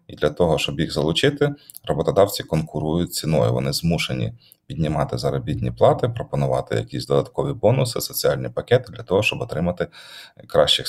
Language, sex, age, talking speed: Ukrainian, male, 30-49, 140 wpm